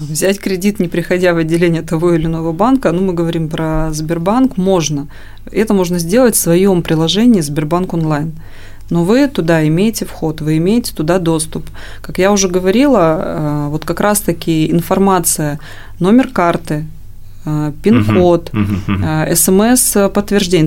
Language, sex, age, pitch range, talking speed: Russian, female, 20-39, 155-195 Hz, 130 wpm